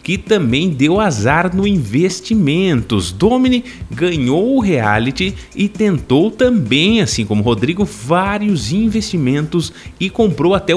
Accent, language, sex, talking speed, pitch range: Brazilian, Portuguese, male, 115 wpm, 130-210 Hz